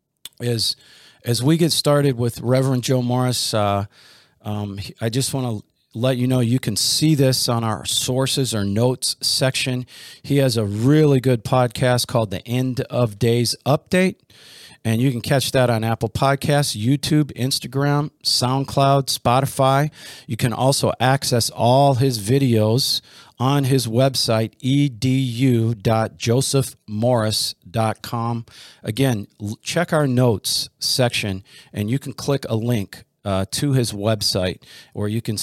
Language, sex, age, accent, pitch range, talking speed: English, male, 40-59, American, 110-135 Hz, 135 wpm